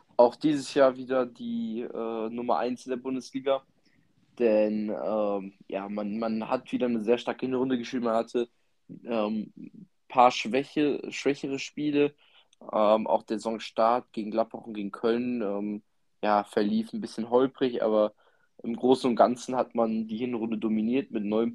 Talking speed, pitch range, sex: 160 wpm, 105-120 Hz, male